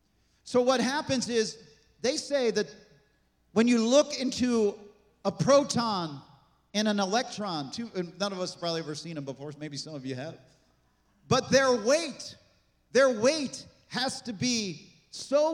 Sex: male